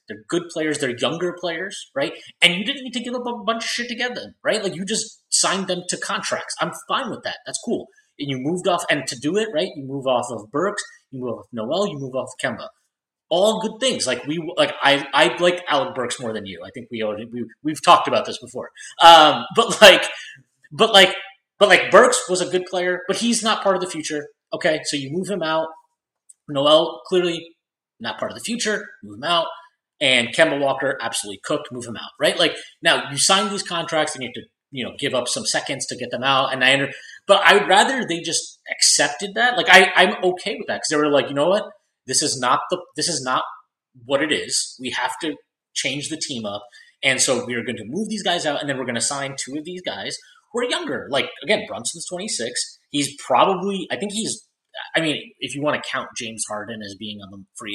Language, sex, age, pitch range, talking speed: English, male, 30-49, 140-205 Hz, 240 wpm